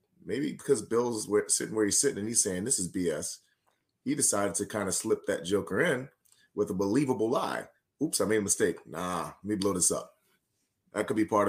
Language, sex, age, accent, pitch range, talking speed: English, male, 30-49, American, 100-135 Hz, 215 wpm